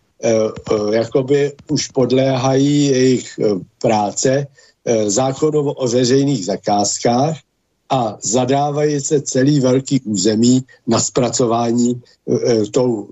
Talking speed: 80 wpm